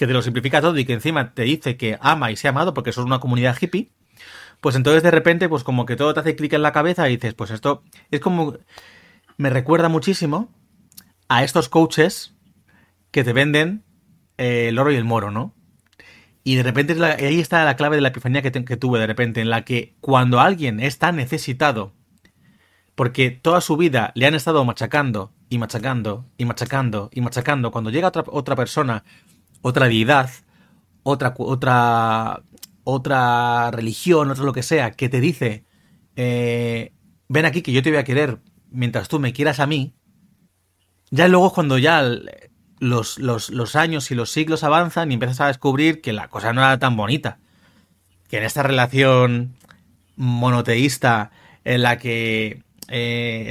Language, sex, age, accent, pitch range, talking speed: Spanish, male, 30-49, Spanish, 120-150 Hz, 175 wpm